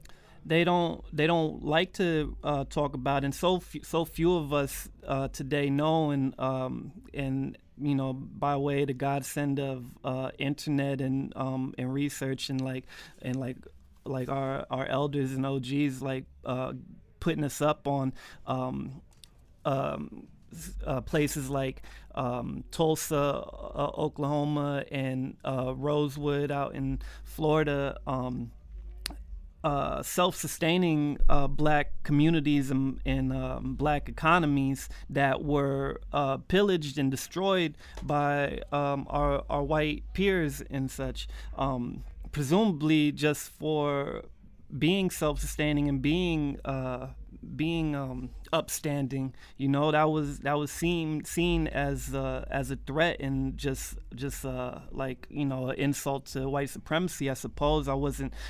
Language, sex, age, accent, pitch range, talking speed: English, male, 30-49, American, 135-150 Hz, 135 wpm